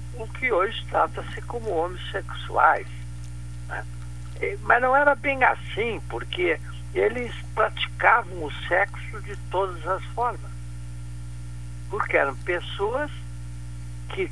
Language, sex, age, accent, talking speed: Portuguese, male, 60-79, Brazilian, 100 wpm